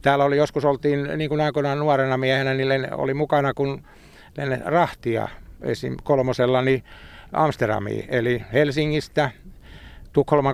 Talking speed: 125 wpm